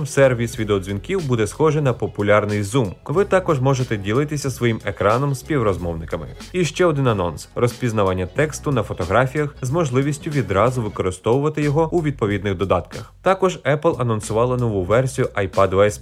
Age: 30-49